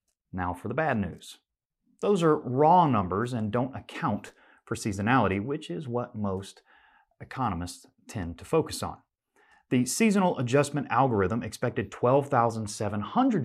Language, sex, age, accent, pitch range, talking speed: English, male, 30-49, American, 105-150 Hz, 130 wpm